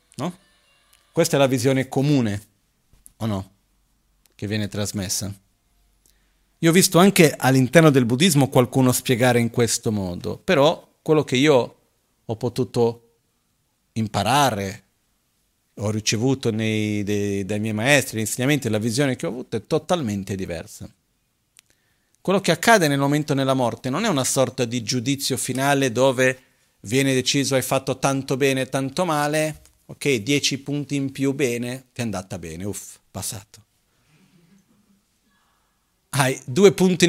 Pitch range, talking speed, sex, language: 110-150 Hz, 140 wpm, male, Italian